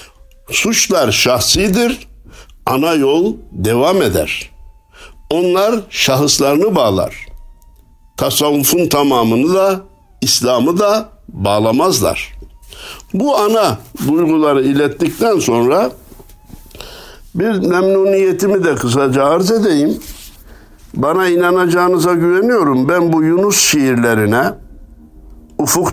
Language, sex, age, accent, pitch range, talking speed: Turkish, male, 60-79, native, 125-195 Hz, 80 wpm